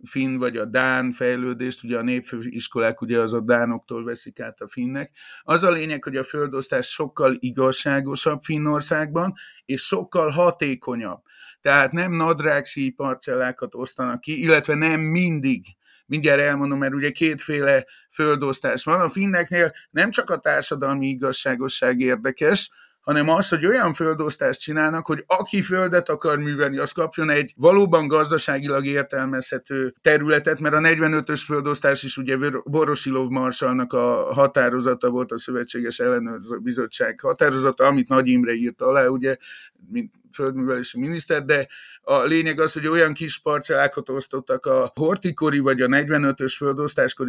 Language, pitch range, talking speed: Hungarian, 130-155 Hz, 135 wpm